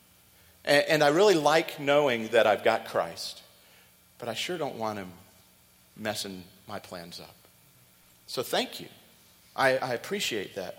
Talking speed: 140 wpm